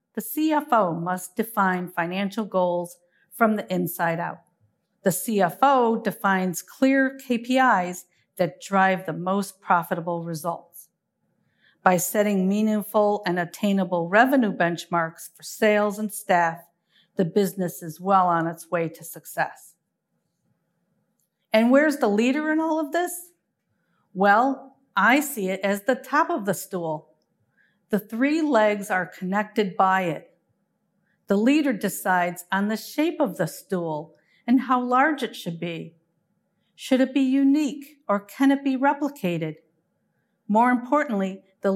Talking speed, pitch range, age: 135 wpm, 180-245 Hz, 50-69